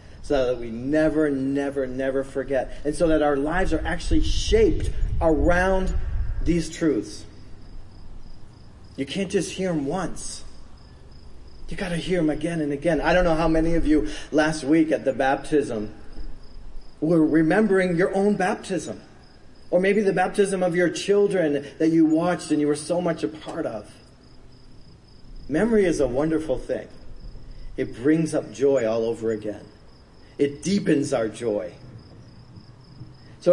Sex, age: male, 40-59